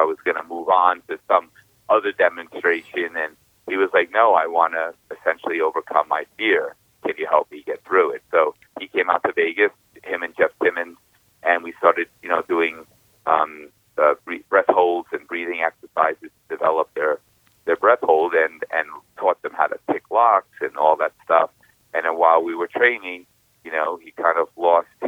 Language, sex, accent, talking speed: English, male, American, 195 wpm